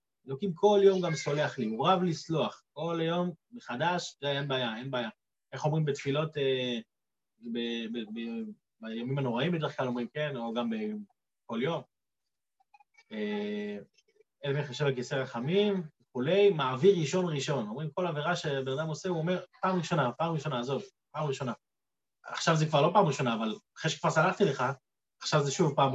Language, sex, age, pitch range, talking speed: Hebrew, male, 30-49, 145-210 Hz, 165 wpm